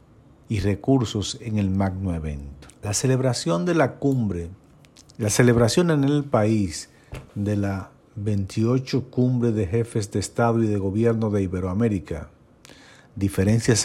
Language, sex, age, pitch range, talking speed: Spanish, male, 50-69, 100-125 Hz, 130 wpm